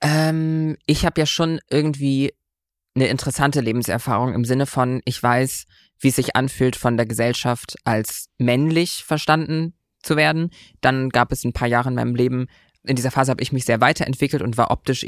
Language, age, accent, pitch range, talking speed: German, 20-39, German, 120-145 Hz, 180 wpm